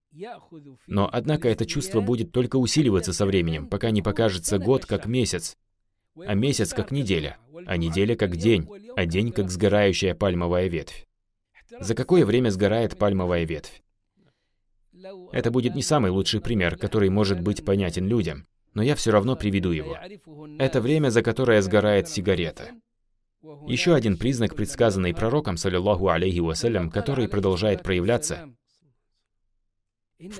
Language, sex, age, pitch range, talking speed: Russian, male, 20-39, 95-125 Hz, 140 wpm